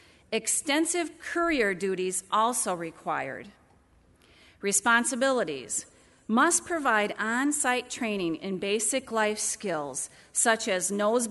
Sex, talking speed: female, 90 wpm